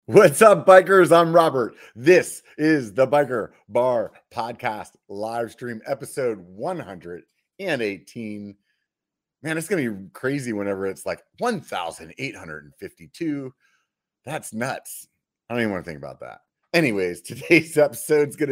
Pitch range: 100-135 Hz